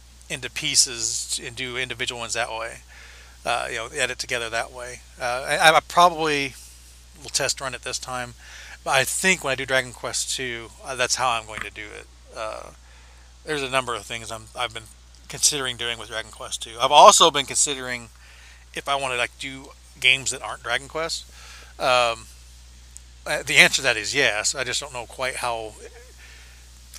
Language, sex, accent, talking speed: English, male, American, 190 wpm